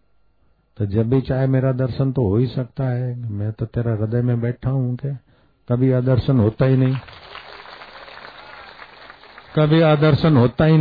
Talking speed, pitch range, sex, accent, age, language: 155 wpm, 120-140 Hz, male, native, 50-69, Hindi